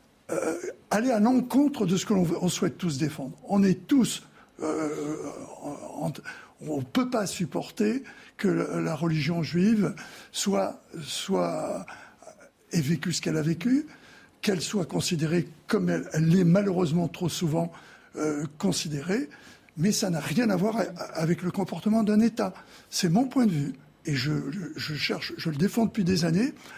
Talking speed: 165 wpm